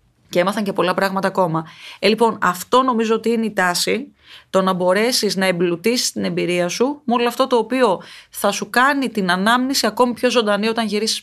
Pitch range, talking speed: 185-230 Hz, 190 wpm